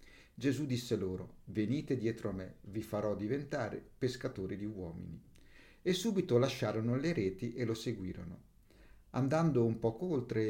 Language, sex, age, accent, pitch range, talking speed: Italian, male, 50-69, native, 105-130 Hz, 145 wpm